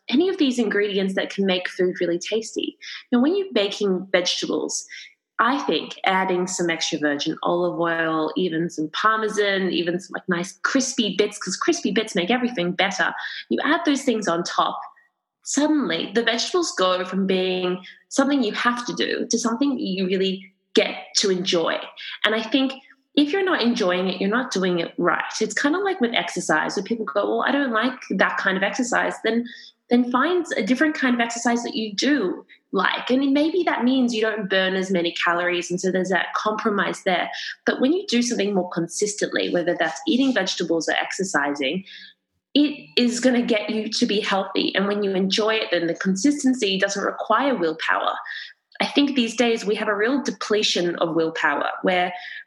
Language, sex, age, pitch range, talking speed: English, female, 20-39, 180-245 Hz, 190 wpm